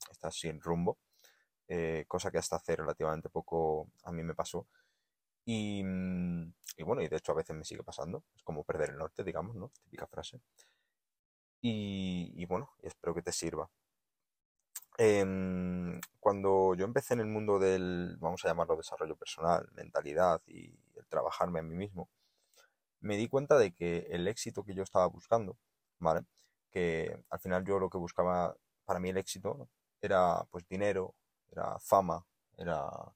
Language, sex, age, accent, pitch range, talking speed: Spanish, male, 20-39, Spanish, 85-105 Hz, 165 wpm